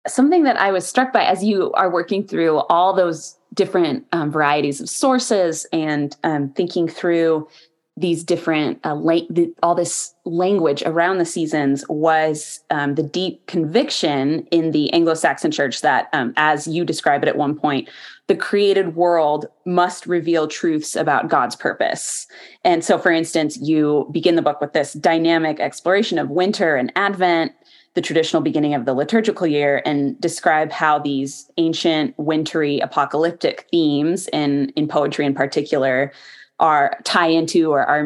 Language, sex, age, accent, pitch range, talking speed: English, female, 20-39, American, 150-185 Hz, 160 wpm